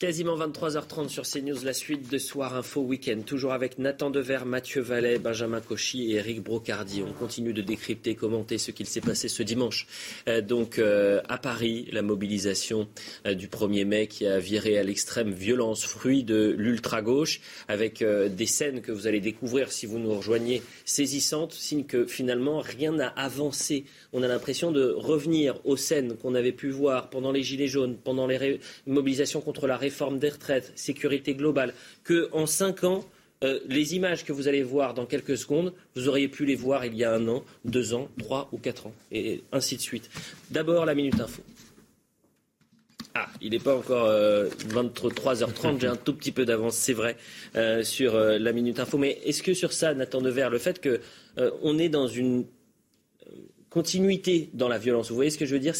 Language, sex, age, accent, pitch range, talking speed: French, male, 30-49, French, 115-145 Hz, 195 wpm